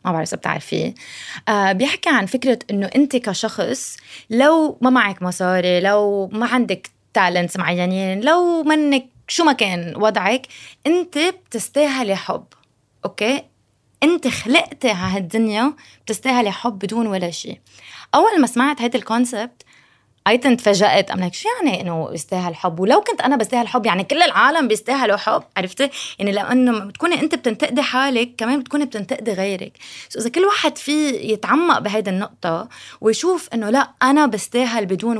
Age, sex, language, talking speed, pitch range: 20-39, female, Arabic, 150 wpm, 200-280 Hz